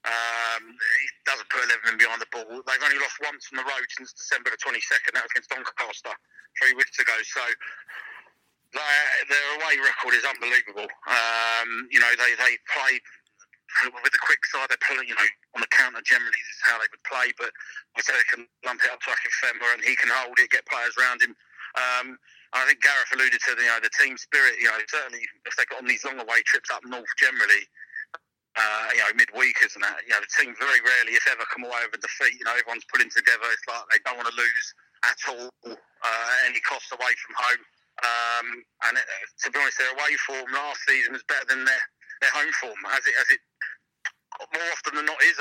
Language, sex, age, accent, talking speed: English, male, 30-49, British, 225 wpm